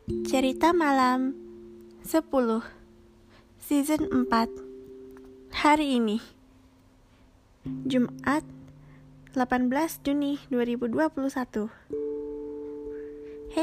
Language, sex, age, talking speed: Indonesian, female, 20-39, 55 wpm